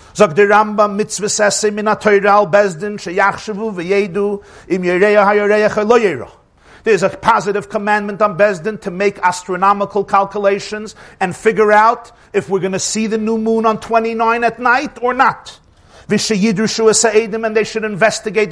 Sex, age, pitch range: male, 50-69, 195-225 Hz